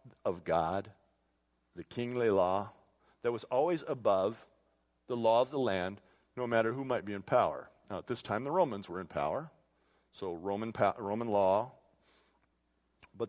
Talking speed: 165 wpm